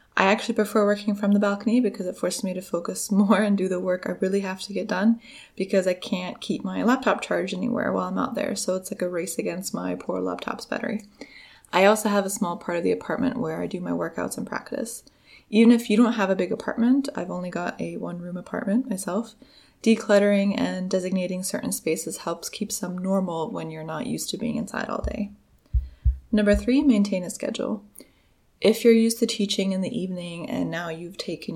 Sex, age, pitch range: female, 20-39, 175-225 Hz